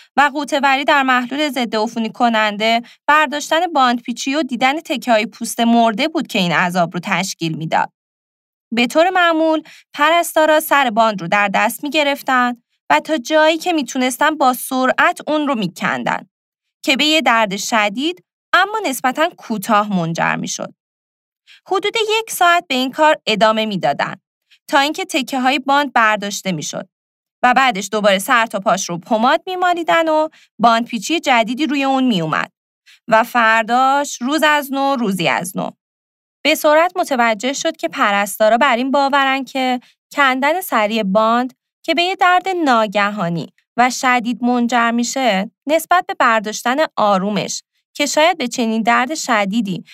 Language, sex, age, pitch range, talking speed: Persian, female, 20-39, 220-300 Hz, 150 wpm